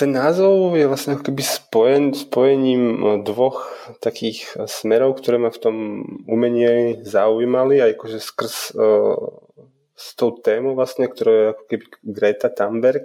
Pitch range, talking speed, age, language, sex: 110-130 Hz, 125 wpm, 20-39, Czech, male